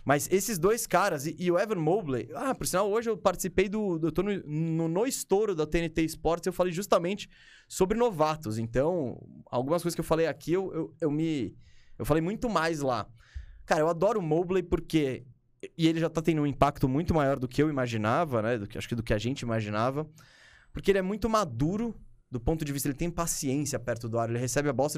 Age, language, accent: 20-39, Portuguese, Brazilian